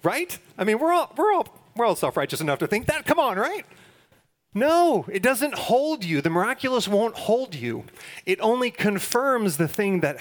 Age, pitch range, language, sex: 40-59, 150-200 Hz, English, male